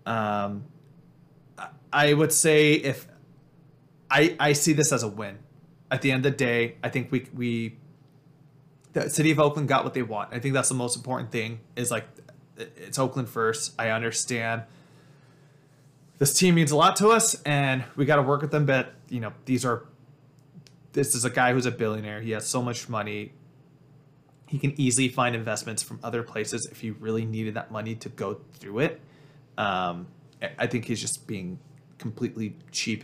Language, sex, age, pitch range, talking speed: English, male, 20-39, 115-145 Hz, 185 wpm